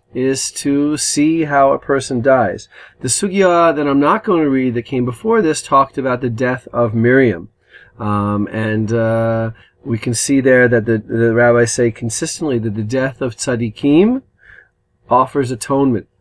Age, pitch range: 40-59, 115-145 Hz